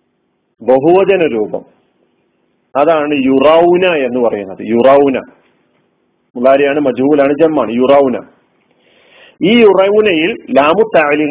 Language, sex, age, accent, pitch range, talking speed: Malayalam, male, 40-59, native, 130-170 Hz, 75 wpm